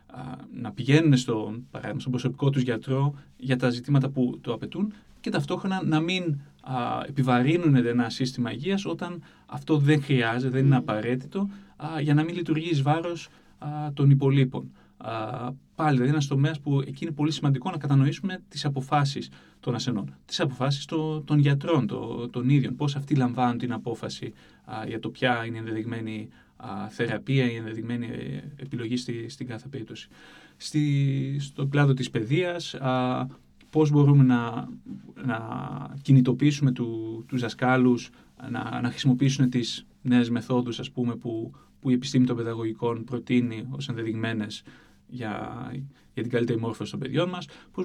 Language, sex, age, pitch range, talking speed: Greek, male, 30-49, 120-145 Hz, 145 wpm